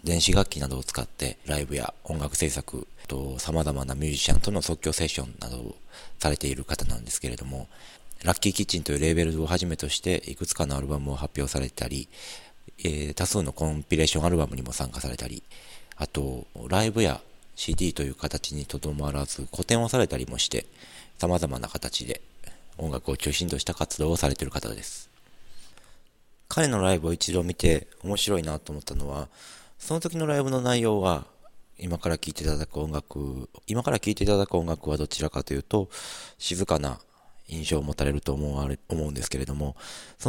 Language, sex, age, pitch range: Japanese, male, 40-59, 70-90 Hz